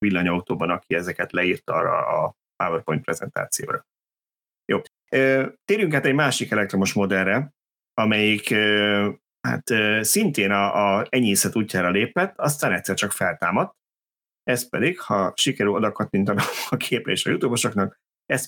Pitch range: 95-110 Hz